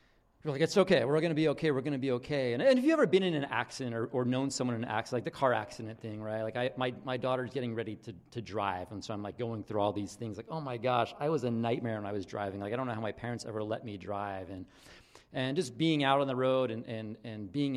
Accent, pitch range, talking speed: American, 115-150 Hz, 305 wpm